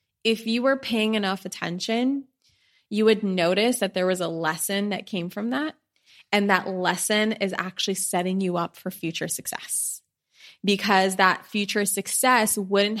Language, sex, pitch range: English, female, 190-225 Hz